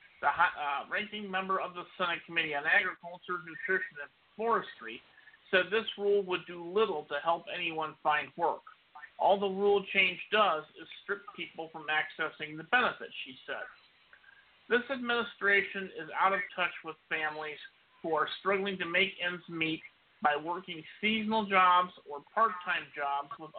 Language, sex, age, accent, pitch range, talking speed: English, male, 50-69, American, 160-205 Hz, 155 wpm